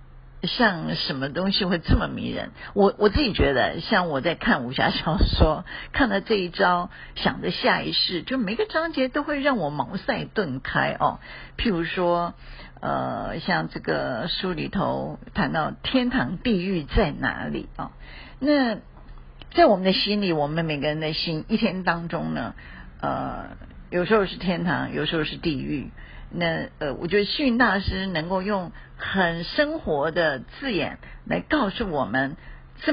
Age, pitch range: 50-69, 165-220 Hz